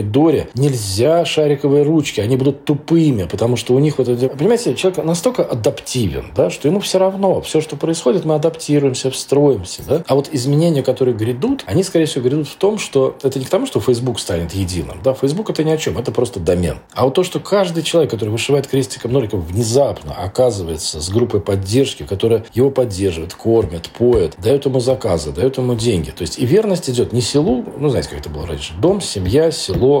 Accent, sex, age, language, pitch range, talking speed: native, male, 40-59, Russian, 110-145 Hz, 200 wpm